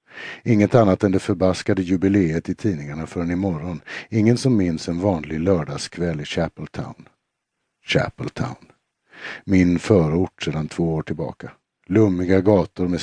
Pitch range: 85-100 Hz